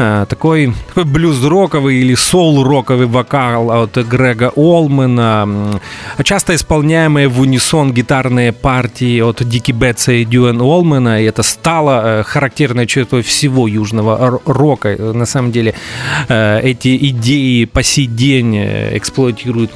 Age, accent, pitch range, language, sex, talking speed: 30-49, native, 110-145 Hz, Russian, male, 115 wpm